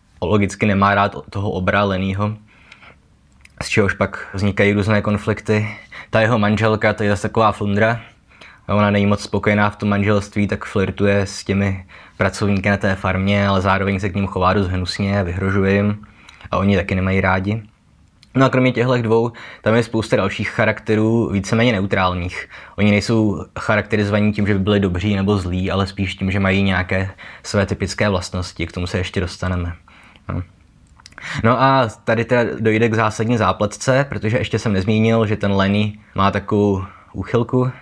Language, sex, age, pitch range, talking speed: Czech, male, 20-39, 95-110 Hz, 170 wpm